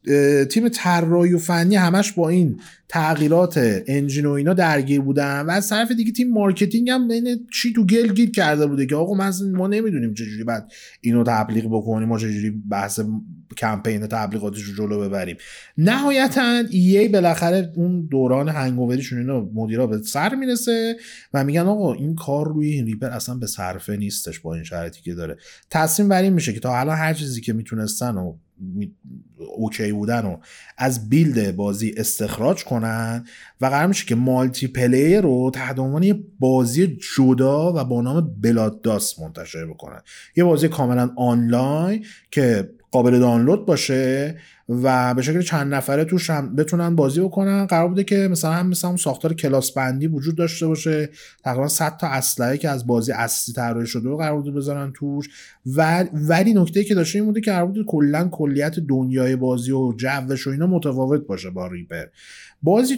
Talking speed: 165 wpm